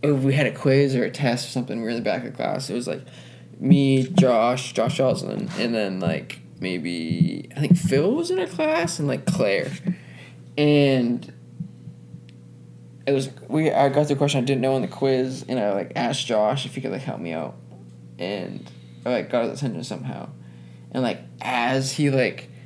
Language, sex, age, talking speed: English, male, 20-39, 205 wpm